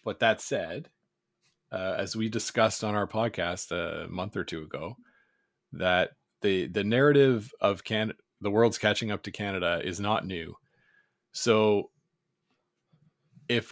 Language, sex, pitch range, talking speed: English, male, 100-120 Hz, 140 wpm